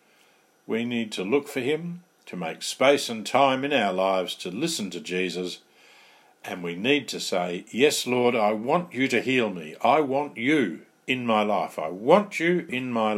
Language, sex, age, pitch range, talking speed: English, male, 50-69, 90-125 Hz, 190 wpm